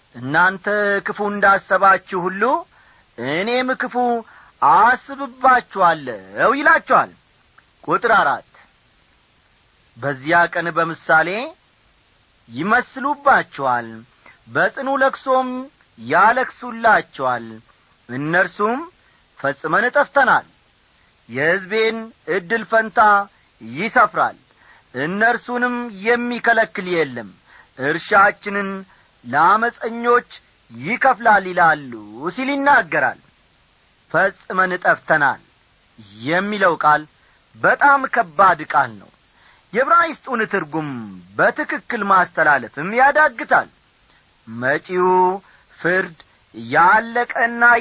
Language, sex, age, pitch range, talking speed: Amharic, male, 40-59, 160-245 Hz, 60 wpm